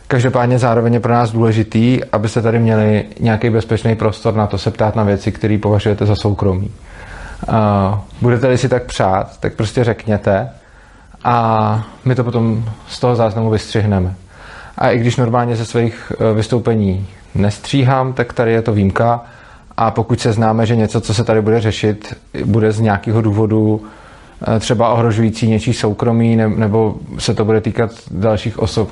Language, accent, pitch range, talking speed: Czech, native, 105-120 Hz, 160 wpm